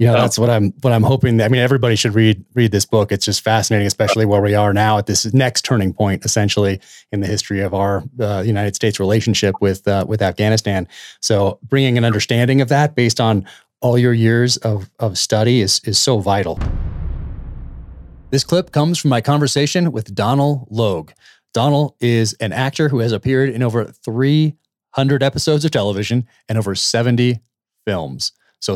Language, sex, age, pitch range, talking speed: English, male, 30-49, 105-130 Hz, 190 wpm